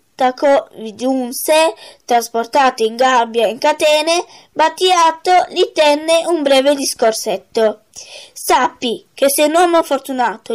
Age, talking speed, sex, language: 20-39, 115 wpm, female, Italian